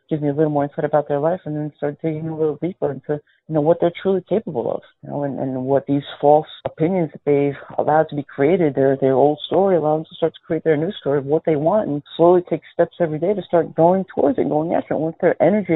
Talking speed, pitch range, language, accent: 275 wpm, 145-175 Hz, English, American